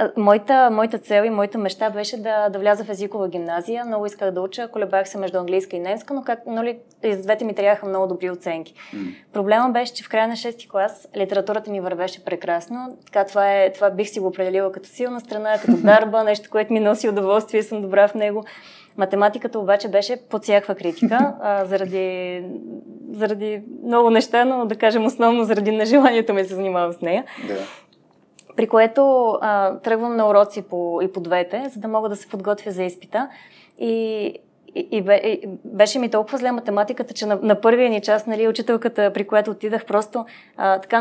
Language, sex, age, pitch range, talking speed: Bulgarian, female, 20-39, 200-230 Hz, 190 wpm